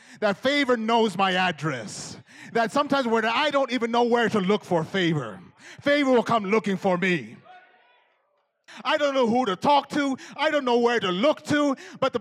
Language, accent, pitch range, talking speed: English, American, 165-230 Hz, 185 wpm